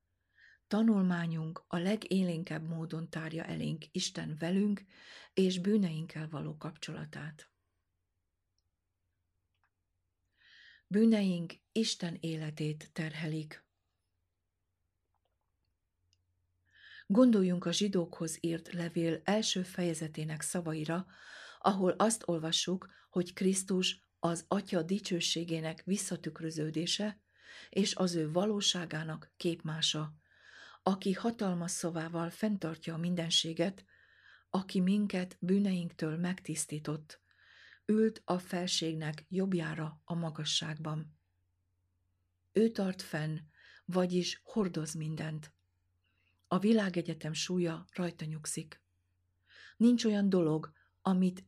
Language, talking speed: Hungarian, 80 wpm